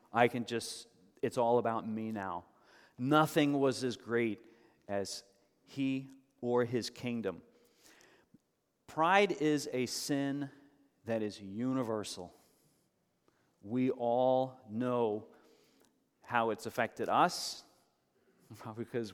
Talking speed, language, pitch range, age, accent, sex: 100 wpm, English, 105-130 Hz, 40-59, American, male